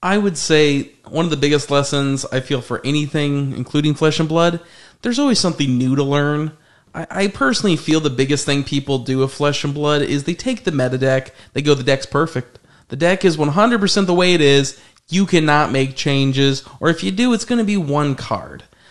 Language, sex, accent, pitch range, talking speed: English, male, American, 135-175 Hz, 215 wpm